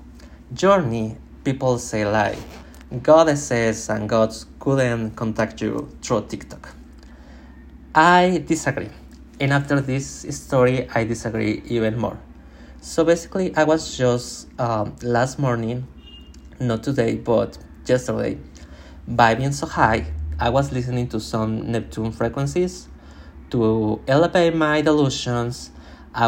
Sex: male